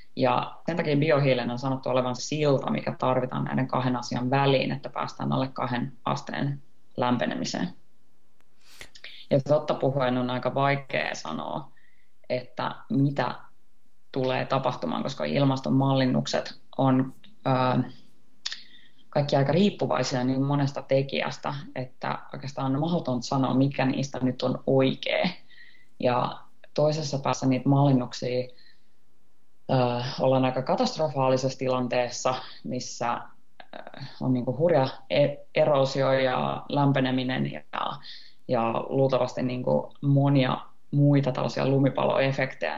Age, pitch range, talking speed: 20-39, 125-135 Hz, 105 wpm